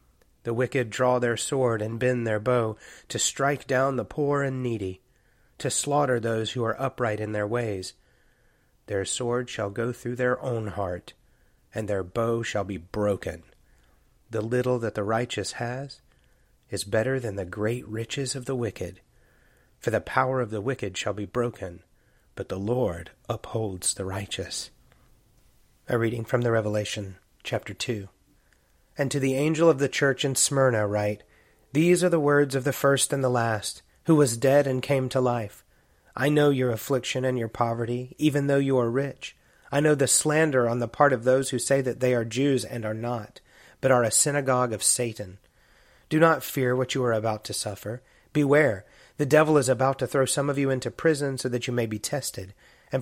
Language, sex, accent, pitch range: English, male, American, 110-135 Hz